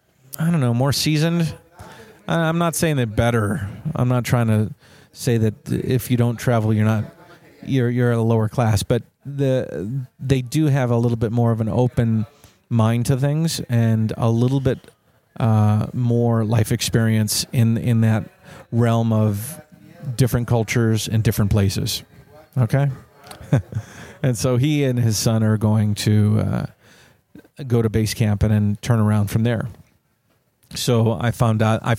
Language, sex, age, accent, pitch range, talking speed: English, male, 40-59, American, 110-135 Hz, 160 wpm